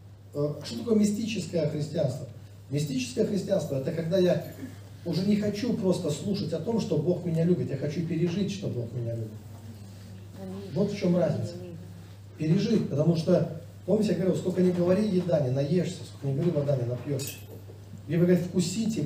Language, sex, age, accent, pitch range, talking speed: Russian, male, 40-59, native, 105-180 Hz, 170 wpm